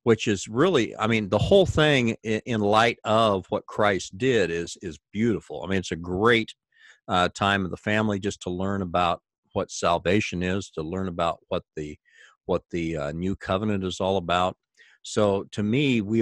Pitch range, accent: 90-110 Hz, American